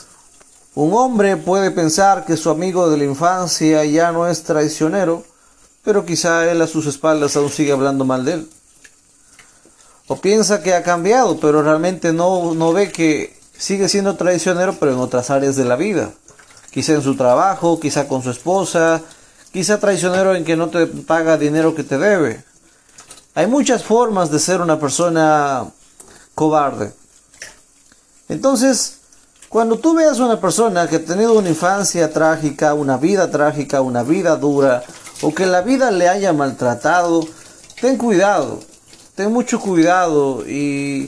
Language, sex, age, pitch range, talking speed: Spanish, male, 40-59, 150-195 Hz, 155 wpm